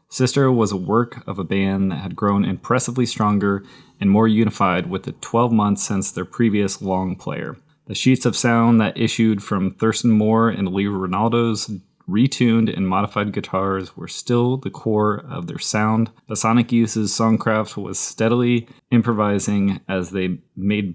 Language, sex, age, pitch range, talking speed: English, male, 20-39, 100-120 Hz, 165 wpm